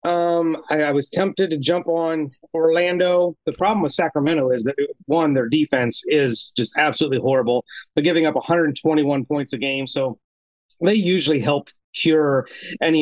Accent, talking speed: American, 160 wpm